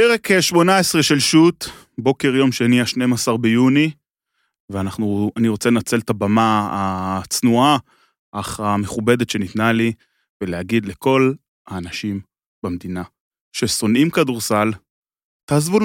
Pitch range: 115-170 Hz